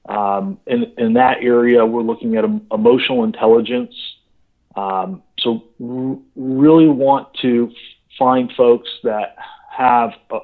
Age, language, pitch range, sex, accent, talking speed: 40-59, English, 115-170 Hz, male, American, 145 wpm